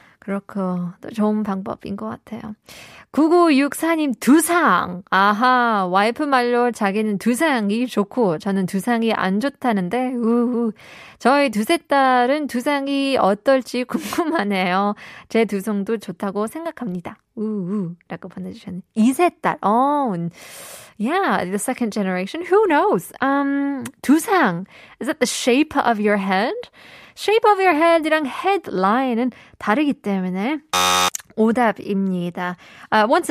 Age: 20-39